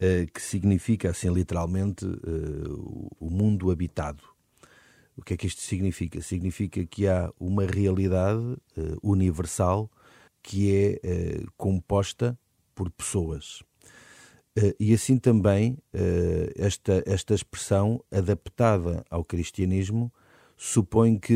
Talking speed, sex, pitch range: 110 wpm, male, 90-115 Hz